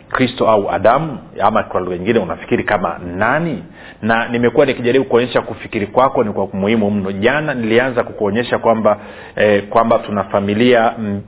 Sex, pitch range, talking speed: male, 105-135 Hz, 145 wpm